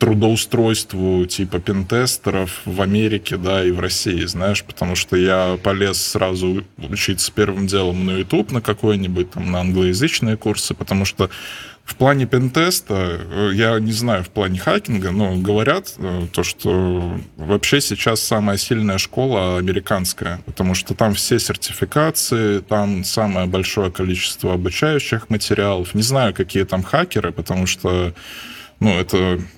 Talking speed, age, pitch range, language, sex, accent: 135 wpm, 20-39, 95-115 Hz, Russian, male, native